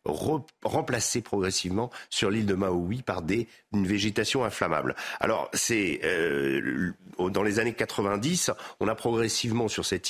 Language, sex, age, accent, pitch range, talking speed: French, male, 50-69, French, 105-140 Hz, 135 wpm